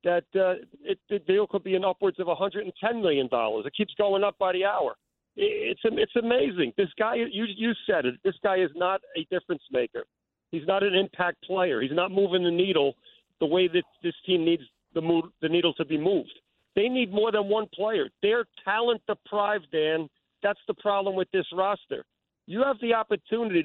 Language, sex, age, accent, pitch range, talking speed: English, male, 50-69, American, 175-215 Hz, 200 wpm